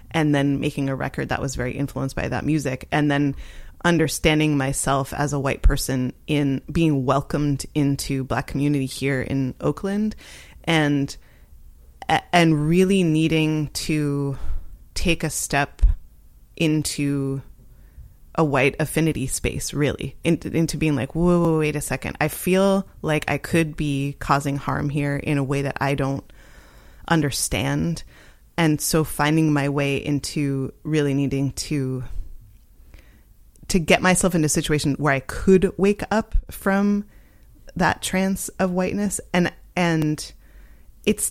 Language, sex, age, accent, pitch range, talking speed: English, female, 20-39, American, 135-170 Hz, 140 wpm